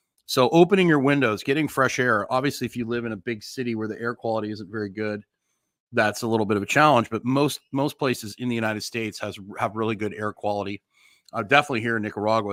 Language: English